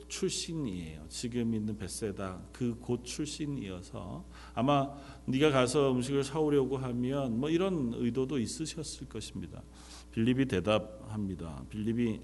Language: Korean